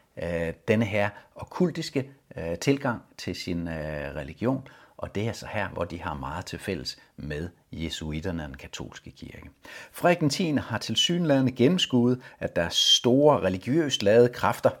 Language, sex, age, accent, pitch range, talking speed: Danish, male, 60-79, native, 90-135 Hz, 155 wpm